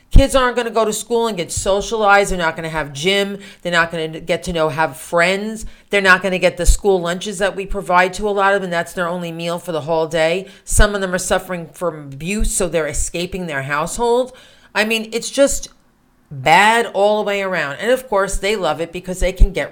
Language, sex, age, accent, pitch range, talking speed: English, female, 40-59, American, 160-215 Hz, 245 wpm